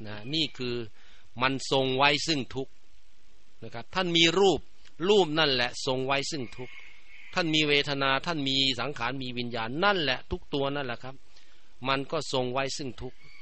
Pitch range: 120-145 Hz